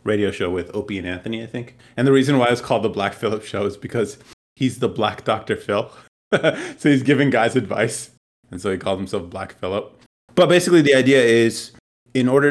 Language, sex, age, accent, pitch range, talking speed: English, male, 30-49, American, 95-120 Hz, 210 wpm